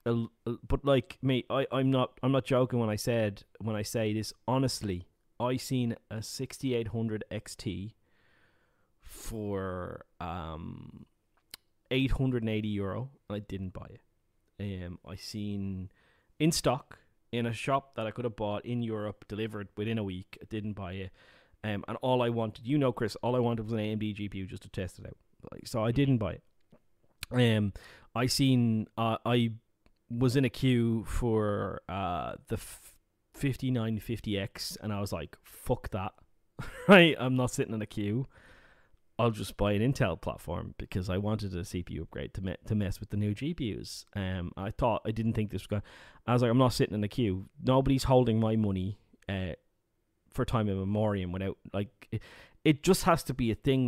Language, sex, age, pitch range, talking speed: English, male, 20-39, 100-125 Hz, 190 wpm